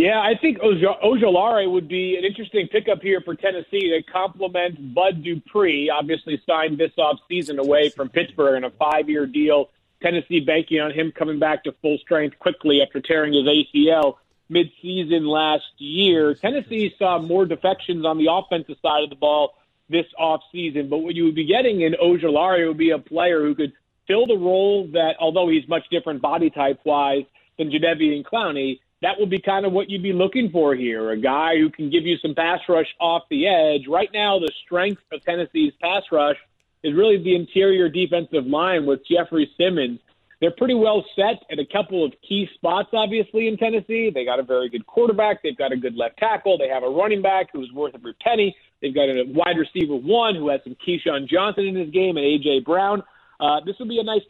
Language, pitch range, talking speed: English, 150-195 Hz, 200 wpm